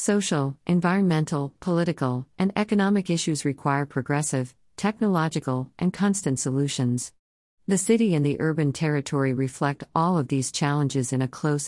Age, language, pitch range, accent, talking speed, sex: 50-69, English, 135-170 Hz, American, 135 wpm, female